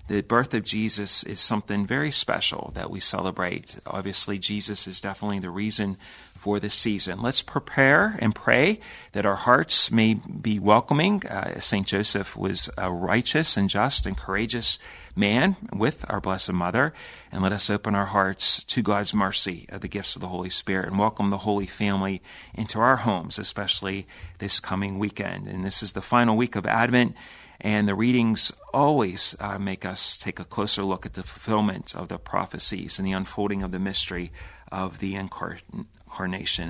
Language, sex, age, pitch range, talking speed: English, male, 40-59, 95-110 Hz, 175 wpm